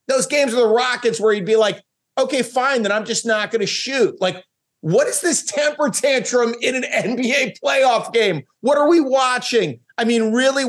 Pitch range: 175-245 Hz